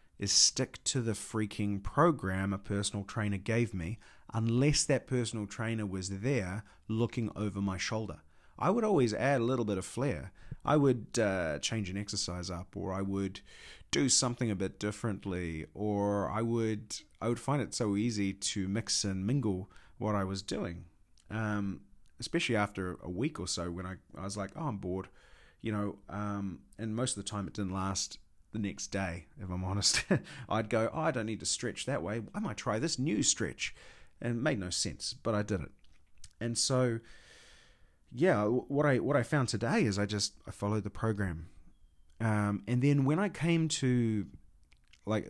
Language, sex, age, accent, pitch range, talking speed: English, male, 30-49, Australian, 95-115 Hz, 190 wpm